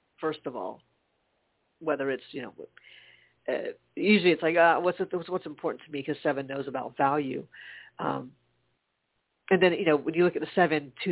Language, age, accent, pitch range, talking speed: English, 40-59, American, 140-165 Hz, 195 wpm